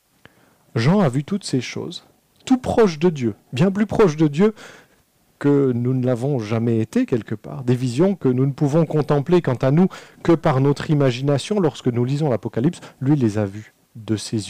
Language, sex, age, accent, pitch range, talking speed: French, male, 40-59, French, 115-170 Hz, 195 wpm